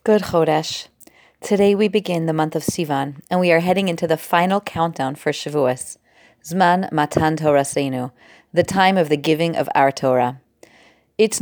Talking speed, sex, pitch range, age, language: 170 wpm, female, 155-210 Hz, 30-49, English